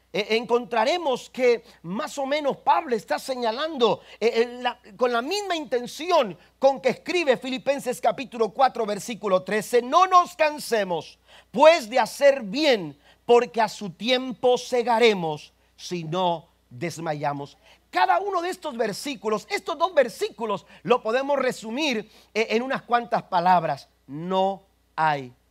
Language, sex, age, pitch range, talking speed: Spanish, male, 40-59, 175-260 Hz, 125 wpm